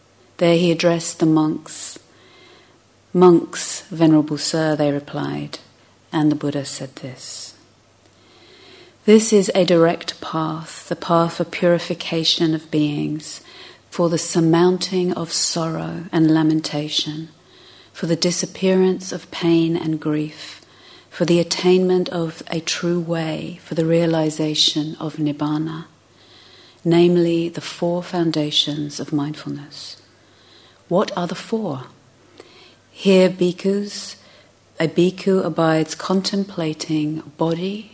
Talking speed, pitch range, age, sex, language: 110 wpm, 150-175 Hz, 40-59, female, English